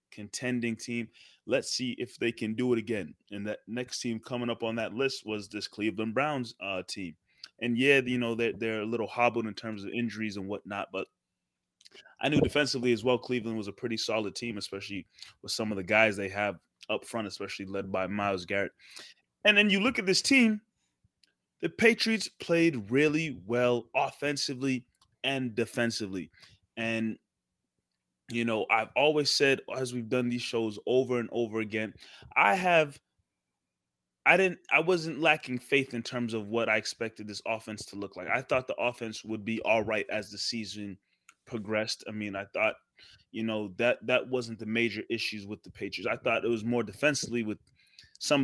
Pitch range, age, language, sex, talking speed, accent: 105-125 Hz, 20-39, English, male, 185 wpm, American